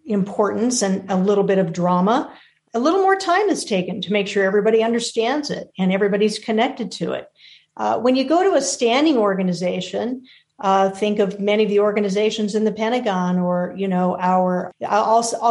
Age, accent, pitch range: 50-69, American, 195-250 Hz